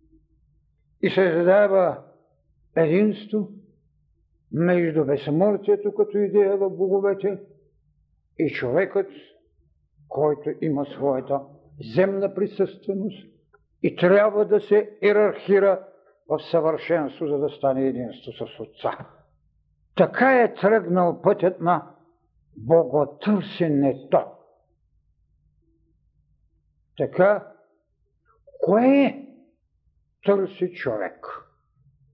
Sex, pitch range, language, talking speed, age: male, 130-205 Hz, Bulgarian, 75 wpm, 60-79